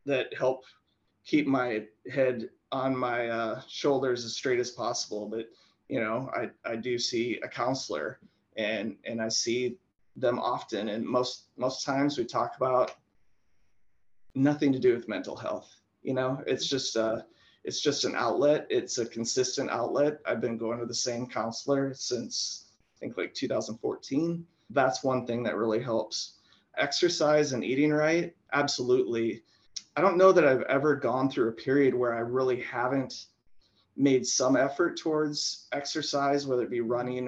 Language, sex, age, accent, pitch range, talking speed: English, male, 30-49, American, 120-150 Hz, 160 wpm